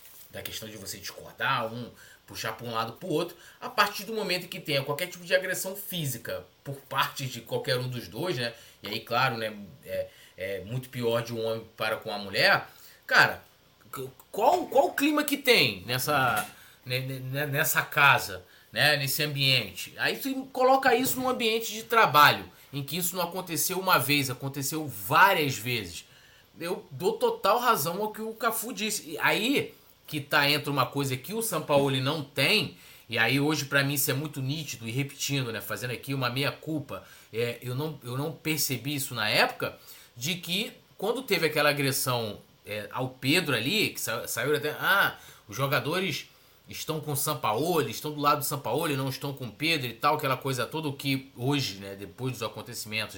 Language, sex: Portuguese, male